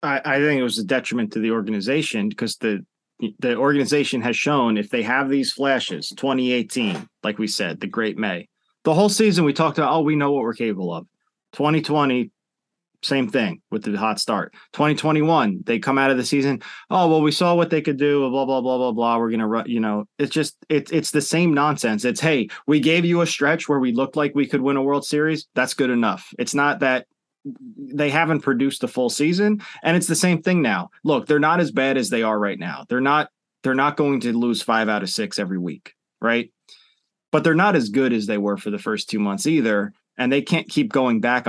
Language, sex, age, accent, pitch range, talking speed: English, male, 20-39, American, 115-155 Hz, 230 wpm